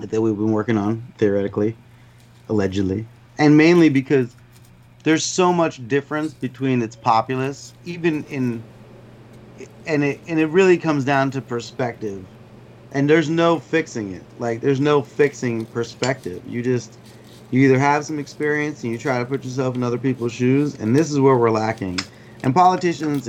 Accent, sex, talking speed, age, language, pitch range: American, male, 160 wpm, 30-49, English, 115-140 Hz